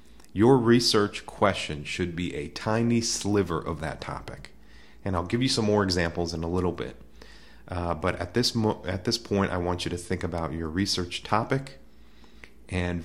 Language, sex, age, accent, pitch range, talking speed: English, male, 30-49, American, 85-110 Hz, 185 wpm